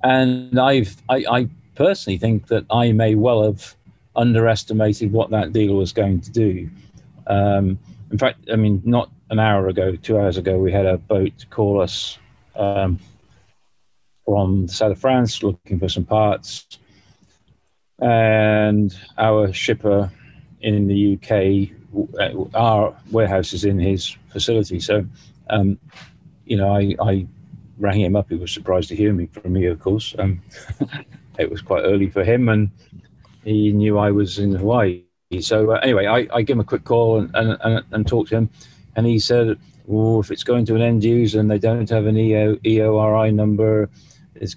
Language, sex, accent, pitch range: English, male, British, 100-115 Hz